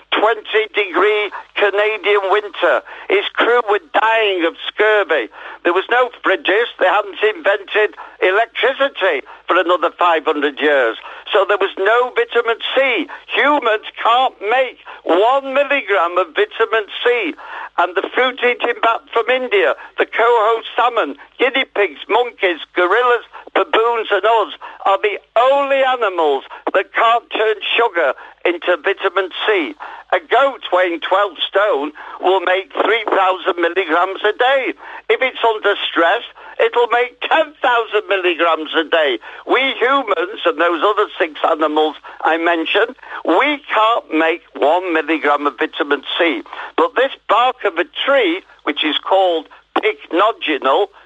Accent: British